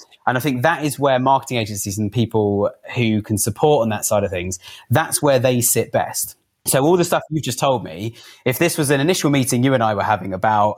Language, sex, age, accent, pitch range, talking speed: English, male, 30-49, British, 105-140 Hz, 245 wpm